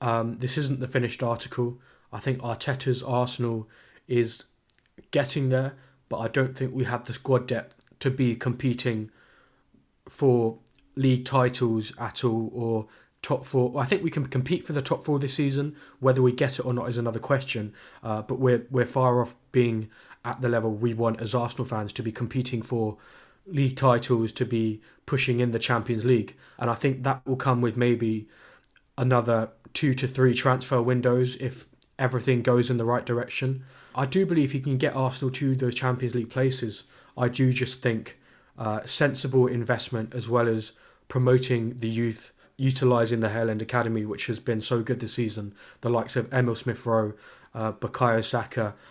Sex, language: male, English